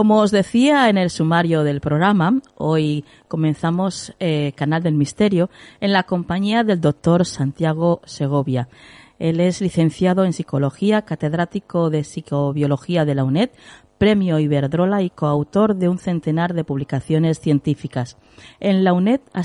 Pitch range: 150-200 Hz